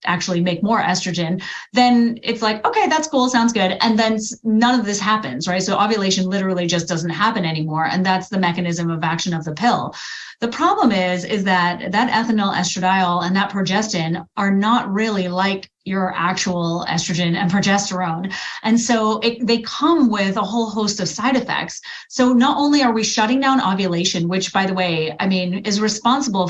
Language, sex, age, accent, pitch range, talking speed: English, female, 30-49, American, 180-220 Hz, 185 wpm